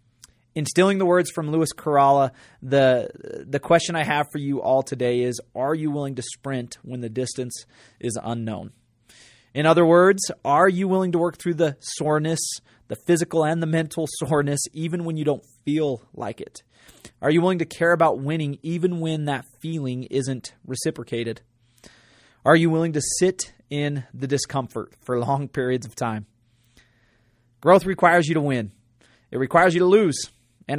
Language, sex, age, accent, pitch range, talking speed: English, male, 30-49, American, 120-155 Hz, 170 wpm